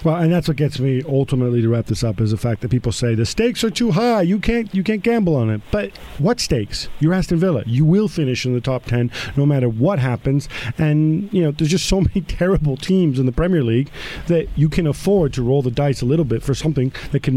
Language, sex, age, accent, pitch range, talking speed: English, male, 50-69, American, 125-185 Hz, 255 wpm